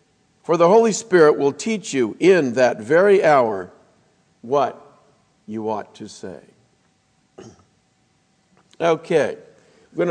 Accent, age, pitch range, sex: American, 50-69, 140-190 Hz, male